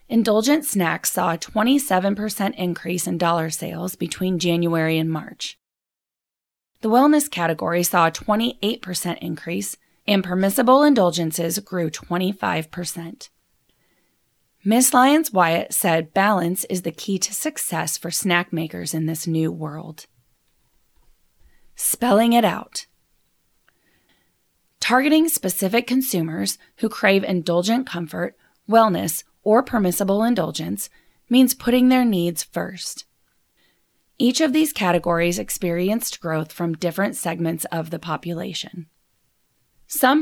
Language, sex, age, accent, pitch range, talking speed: English, female, 20-39, American, 170-225 Hz, 110 wpm